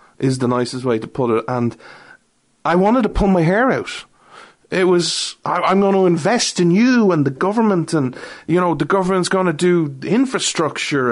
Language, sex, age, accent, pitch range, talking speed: English, male, 30-49, Irish, 145-205 Hz, 190 wpm